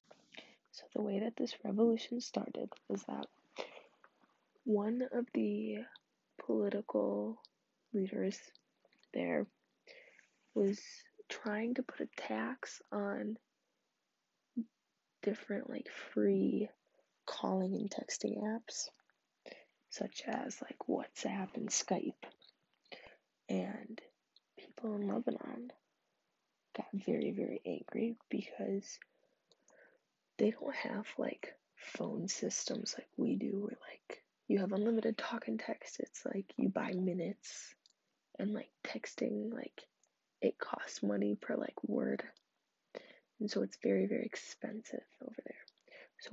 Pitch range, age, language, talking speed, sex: 195-255 Hz, 20-39, English, 110 wpm, female